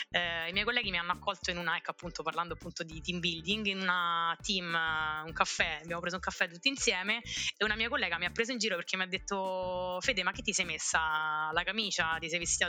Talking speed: 235 wpm